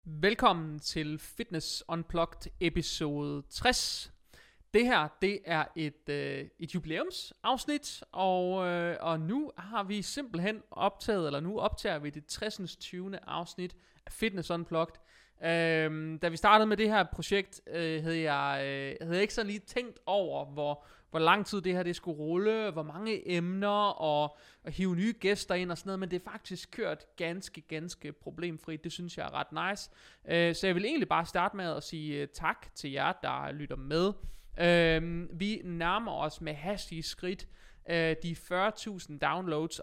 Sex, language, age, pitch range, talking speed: male, Danish, 30-49, 160-195 Hz, 160 wpm